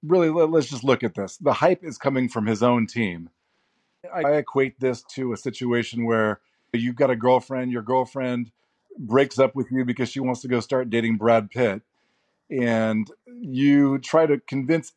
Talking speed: 180 wpm